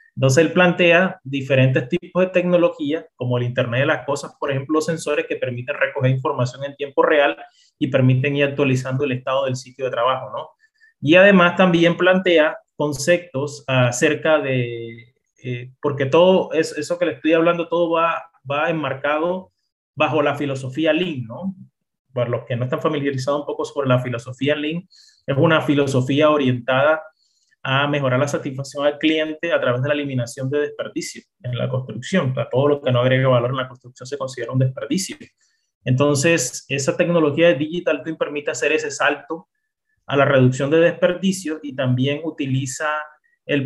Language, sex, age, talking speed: Spanish, male, 30-49, 170 wpm